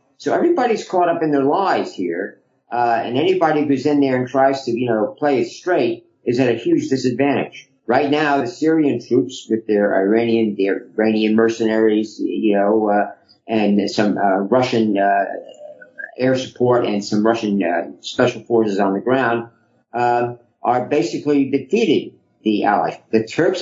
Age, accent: 50-69, American